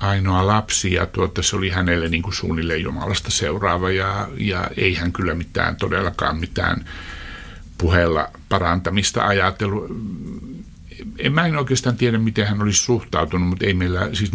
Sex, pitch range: male, 85-105 Hz